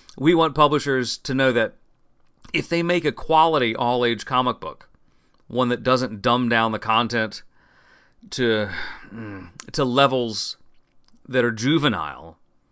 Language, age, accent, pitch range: English, 40-59, American, 120-160 Hz